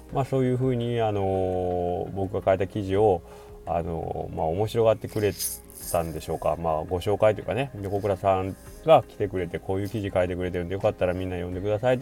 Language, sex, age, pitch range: Japanese, male, 20-39, 85-105 Hz